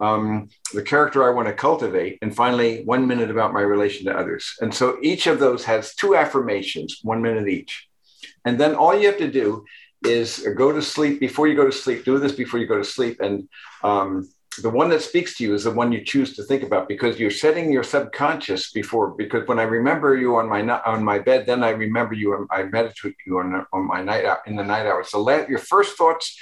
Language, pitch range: English, 105-140 Hz